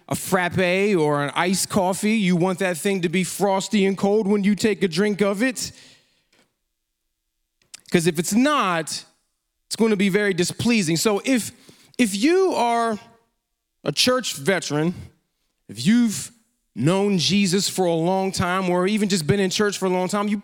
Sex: male